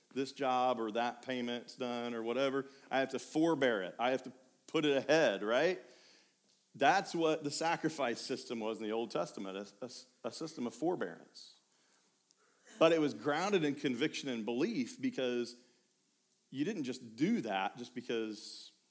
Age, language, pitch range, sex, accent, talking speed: 40-59, English, 115-155 Hz, male, American, 165 wpm